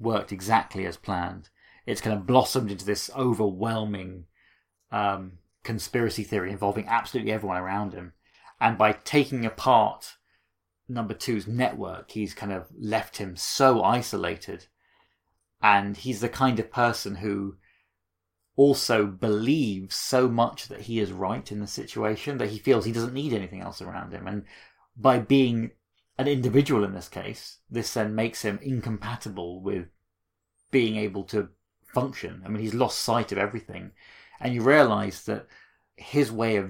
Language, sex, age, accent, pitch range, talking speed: English, male, 30-49, British, 95-115 Hz, 150 wpm